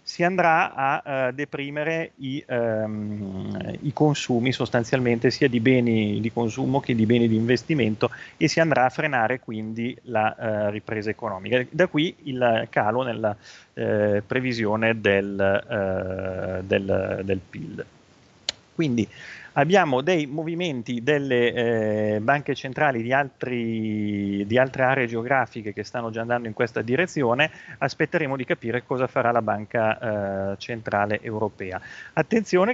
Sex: male